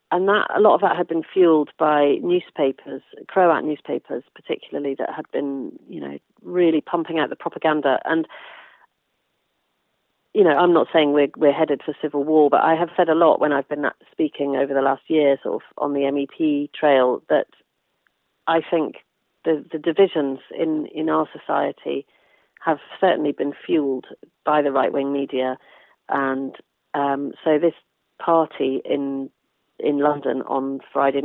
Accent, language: British, English